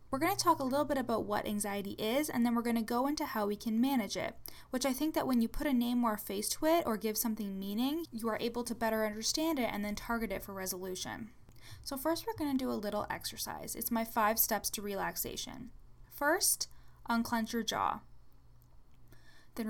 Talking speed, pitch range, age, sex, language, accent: 215 wpm, 205-260 Hz, 10-29, female, English, American